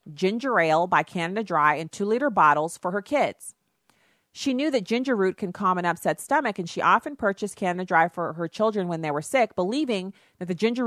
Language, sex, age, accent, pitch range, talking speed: English, female, 40-59, American, 175-235 Hz, 215 wpm